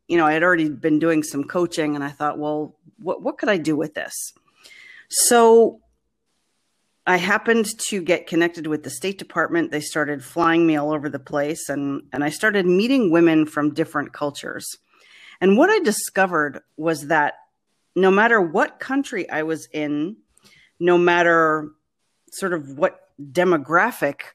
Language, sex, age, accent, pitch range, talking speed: English, female, 40-59, American, 150-185 Hz, 160 wpm